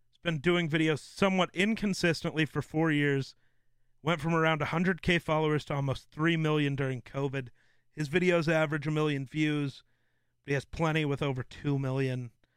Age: 40-59